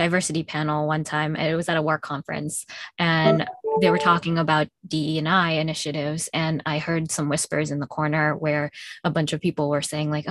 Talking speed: 210 wpm